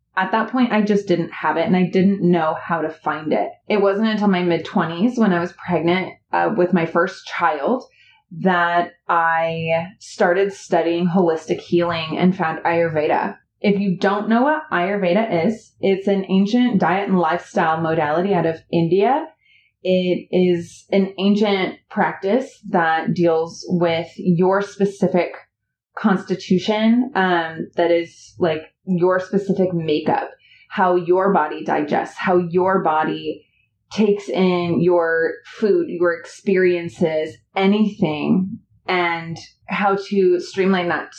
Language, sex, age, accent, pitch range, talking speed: English, female, 20-39, American, 170-200 Hz, 135 wpm